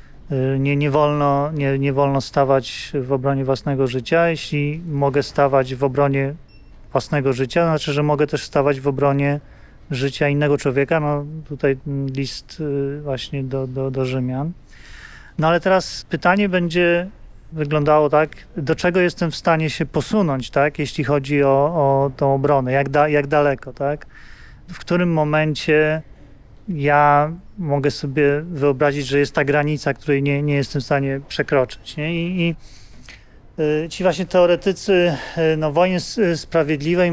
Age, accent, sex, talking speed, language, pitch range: 30-49, native, male, 145 wpm, Polish, 140-155 Hz